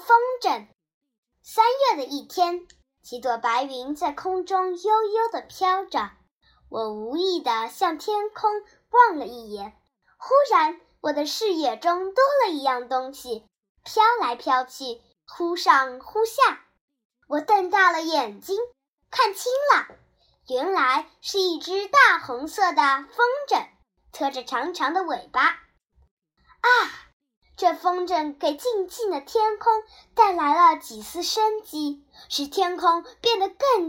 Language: Chinese